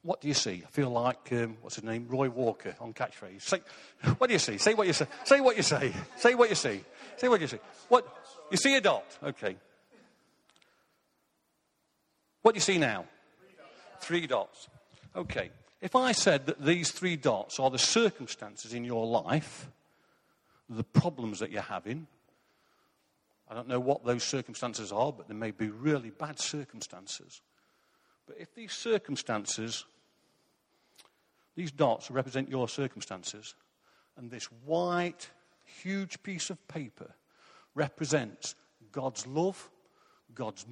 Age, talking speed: 50-69, 150 wpm